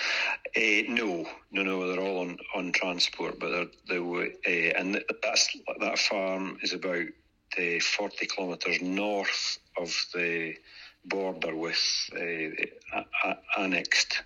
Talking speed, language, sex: 130 wpm, English, male